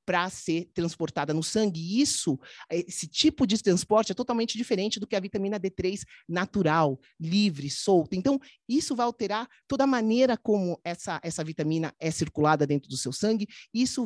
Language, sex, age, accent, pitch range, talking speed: Portuguese, male, 30-49, Brazilian, 170-225 Hz, 165 wpm